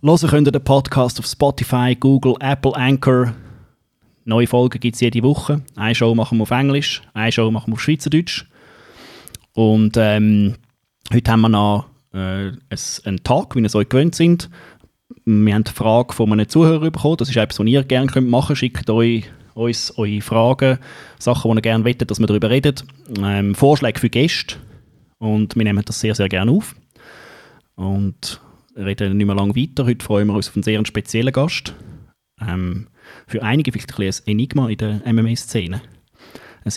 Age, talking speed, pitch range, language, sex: 20-39, 185 wpm, 110-135 Hz, English, male